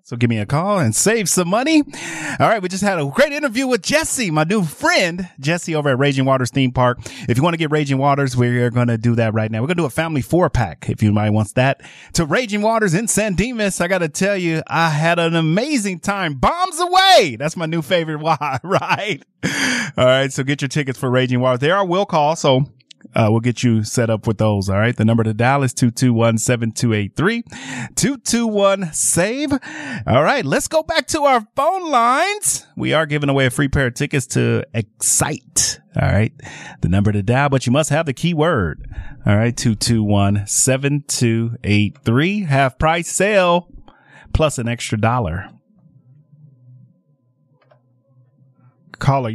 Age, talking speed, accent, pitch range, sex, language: 30-49, 205 wpm, American, 120-180 Hz, male, English